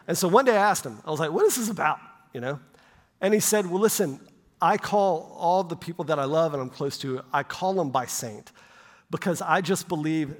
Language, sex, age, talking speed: English, male, 40-59, 240 wpm